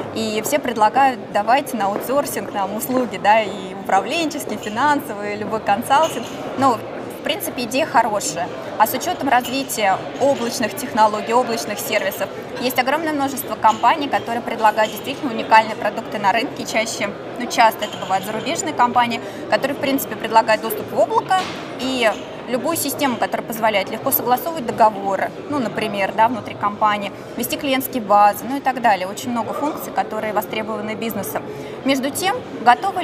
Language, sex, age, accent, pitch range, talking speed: Russian, female, 20-39, native, 220-275 Hz, 145 wpm